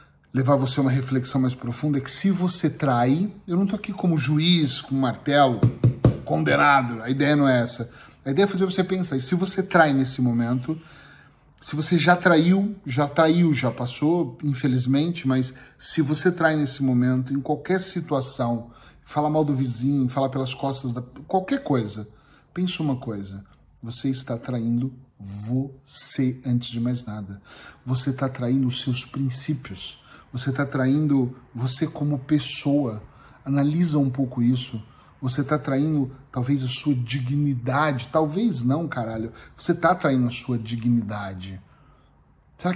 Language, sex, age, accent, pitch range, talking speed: Portuguese, male, 40-59, Brazilian, 125-150 Hz, 155 wpm